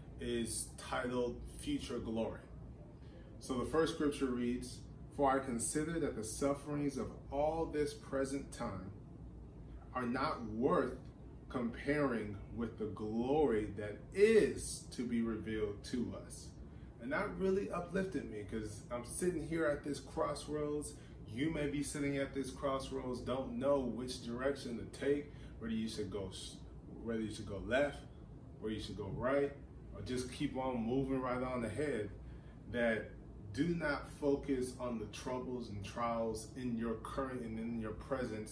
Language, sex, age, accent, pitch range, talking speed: English, male, 30-49, American, 110-140 Hz, 145 wpm